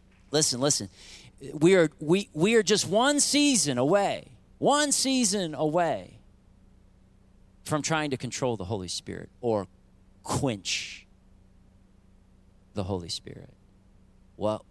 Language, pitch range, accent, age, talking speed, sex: English, 95-130 Hz, American, 40-59, 110 wpm, male